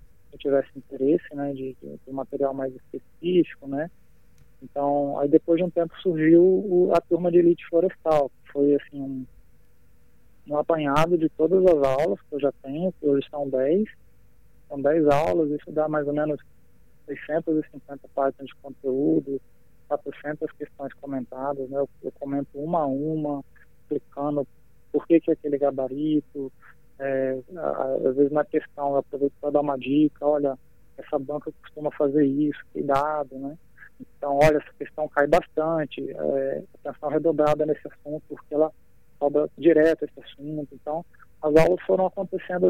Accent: Brazilian